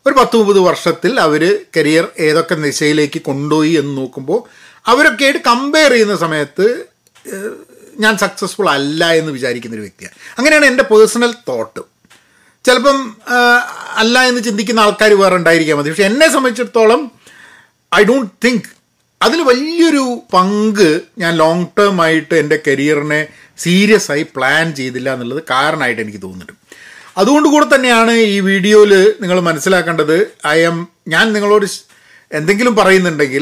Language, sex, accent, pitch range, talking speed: Malayalam, male, native, 150-235 Hz, 120 wpm